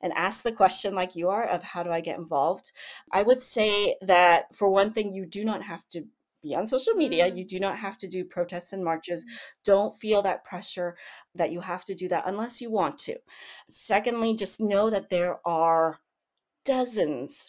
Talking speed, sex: 200 wpm, female